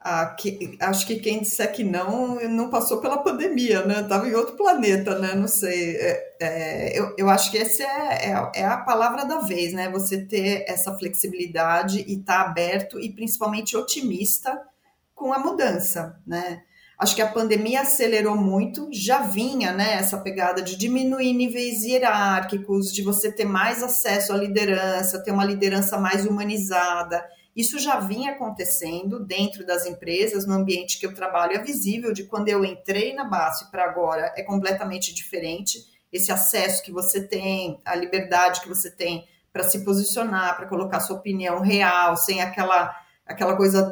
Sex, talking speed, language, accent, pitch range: female, 170 wpm, Portuguese, Brazilian, 185-225 Hz